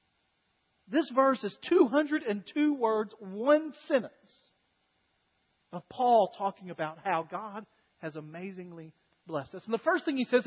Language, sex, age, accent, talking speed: English, male, 40-59, American, 140 wpm